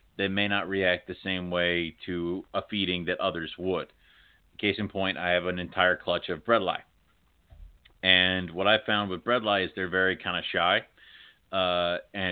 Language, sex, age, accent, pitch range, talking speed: English, male, 30-49, American, 90-100 Hz, 190 wpm